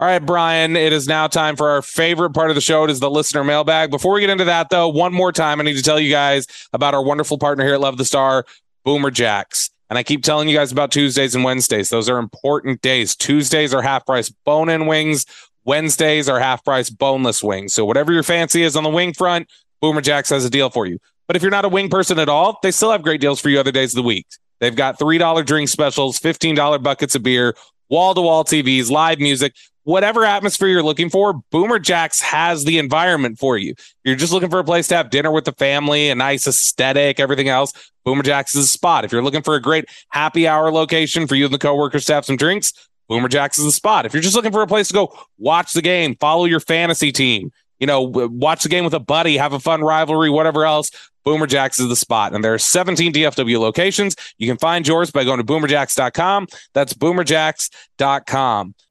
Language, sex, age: English, male, 30-49